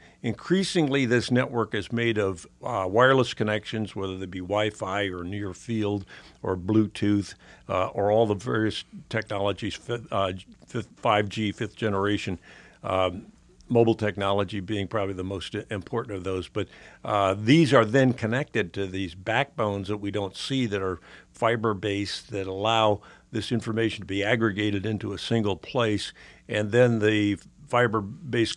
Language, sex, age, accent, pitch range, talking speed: English, male, 60-79, American, 100-115 Hz, 145 wpm